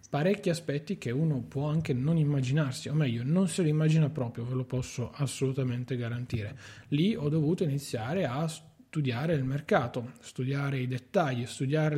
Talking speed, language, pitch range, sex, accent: 160 wpm, Italian, 130-155 Hz, male, native